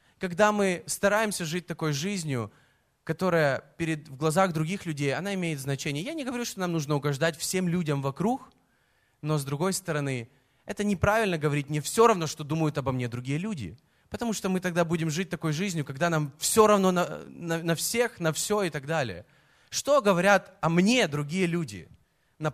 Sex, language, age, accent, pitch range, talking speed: male, Russian, 20-39, native, 145-195 Hz, 180 wpm